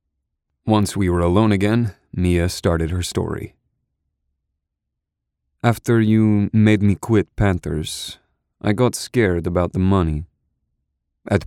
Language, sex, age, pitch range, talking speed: English, male, 30-49, 75-100 Hz, 115 wpm